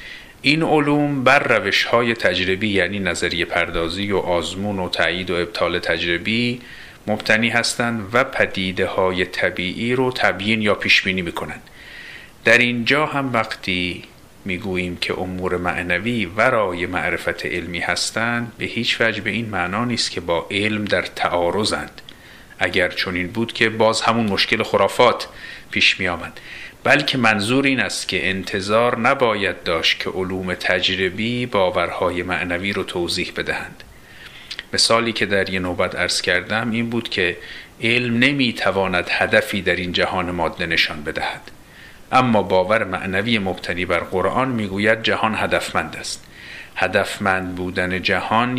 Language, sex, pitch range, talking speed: Persian, male, 90-120 Hz, 130 wpm